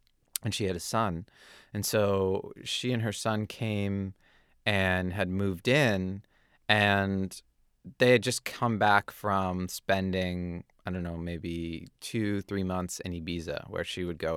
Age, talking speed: 30-49, 155 wpm